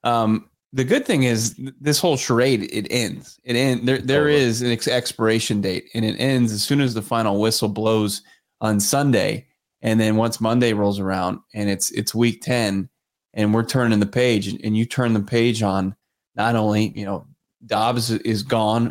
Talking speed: 185 wpm